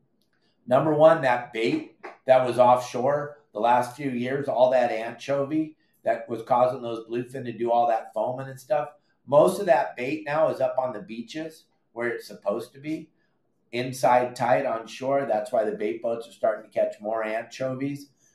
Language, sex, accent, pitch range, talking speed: English, male, American, 125-155 Hz, 185 wpm